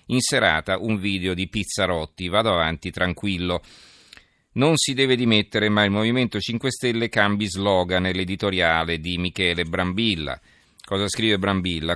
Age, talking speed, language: 40-59, 135 wpm, Italian